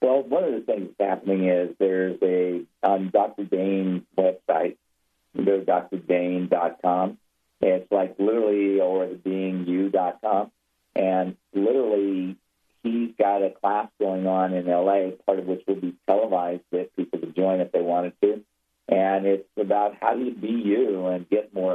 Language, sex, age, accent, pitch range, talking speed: English, male, 50-69, American, 90-100 Hz, 160 wpm